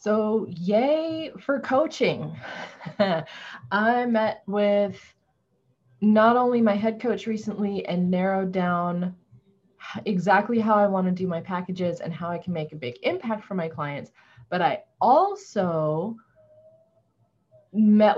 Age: 20-39